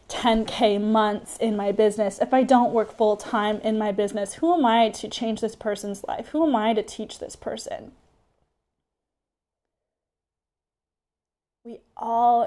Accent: American